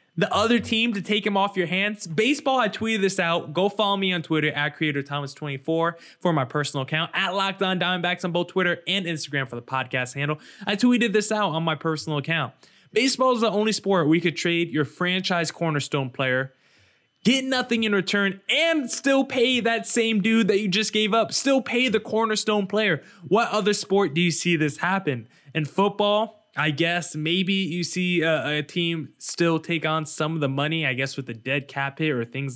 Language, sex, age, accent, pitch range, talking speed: English, male, 20-39, American, 145-195 Hz, 205 wpm